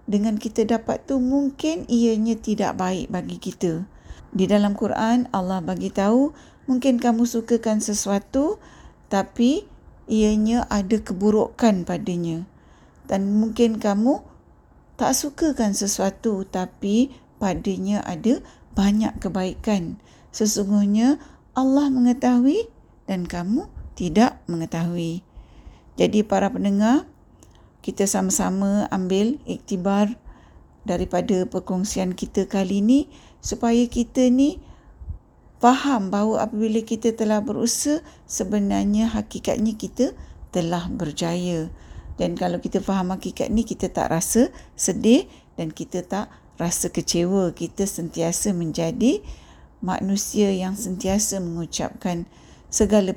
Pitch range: 185-230 Hz